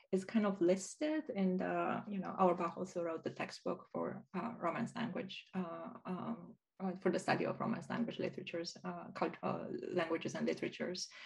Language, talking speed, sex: Turkish, 165 wpm, female